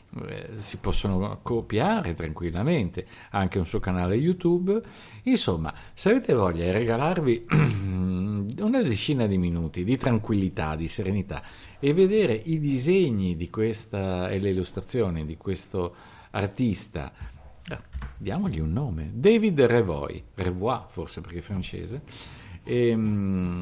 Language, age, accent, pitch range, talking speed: Italian, 50-69, native, 95-135 Hz, 115 wpm